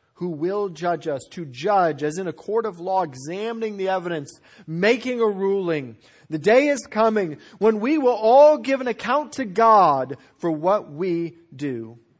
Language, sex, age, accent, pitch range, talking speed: English, male, 40-59, American, 145-220 Hz, 170 wpm